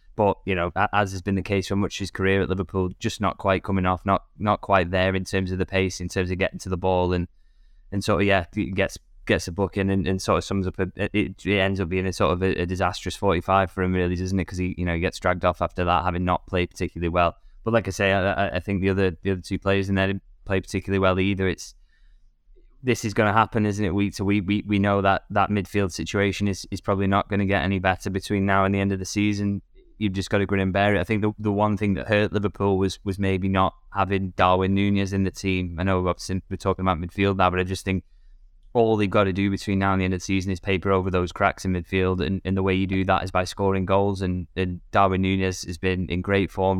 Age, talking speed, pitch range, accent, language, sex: 10-29, 280 wpm, 90-100 Hz, British, English, male